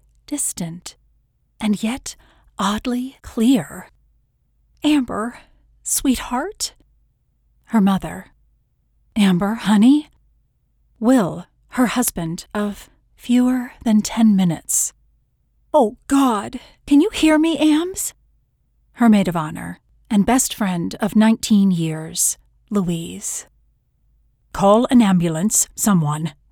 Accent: American